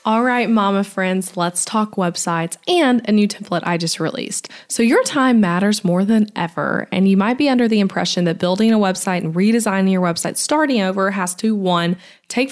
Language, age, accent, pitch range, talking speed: English, 20-39, American, 180-235 Hz, 200 wpm